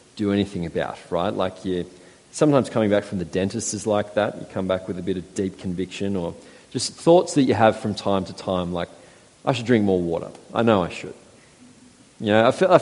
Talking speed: 225 wpm